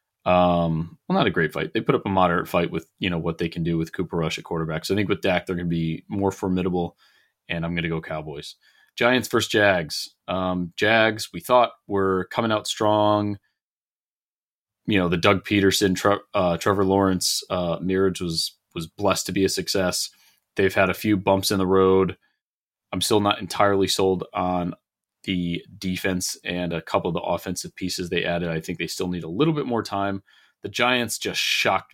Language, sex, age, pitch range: English, male, 30-49, 85-105 Hz